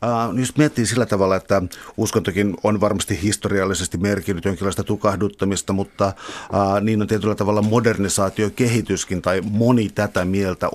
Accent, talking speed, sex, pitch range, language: native, 125 wpm, male, 95-110 Hz, Finnish